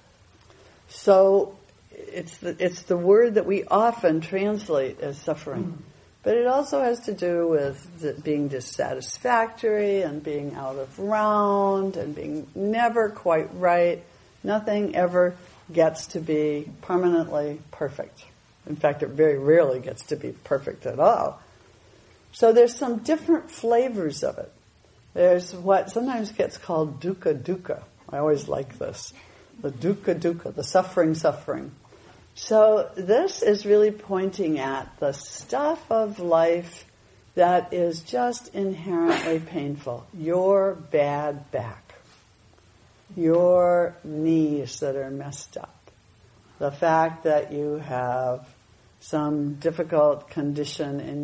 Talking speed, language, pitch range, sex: 125 wpm, English, 140-200 Hz, female